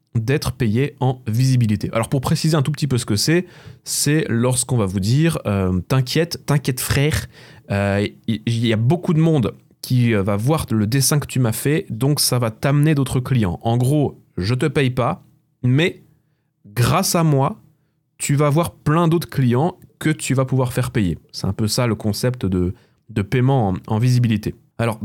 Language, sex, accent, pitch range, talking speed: French, male, French, 115-145 Hz, 195 wpm